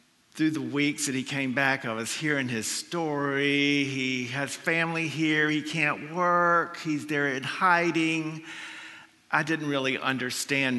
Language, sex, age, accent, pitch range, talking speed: English, male, 50-69, American, 125-150 Hz, 150 wpm